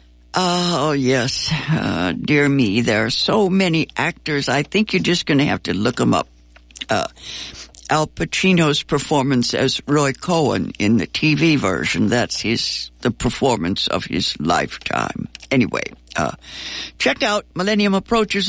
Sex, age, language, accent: female, 60-79, English, American